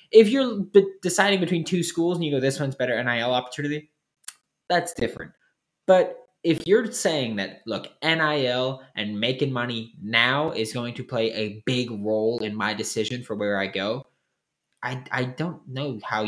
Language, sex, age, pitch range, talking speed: English, male, 20-39, 105-145 Hz, 170 wpm